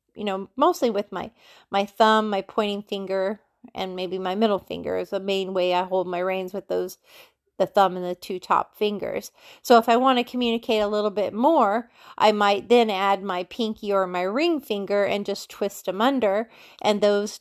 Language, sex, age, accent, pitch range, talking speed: English, female, 30-49, American, 190-235 Hz, 205 wpm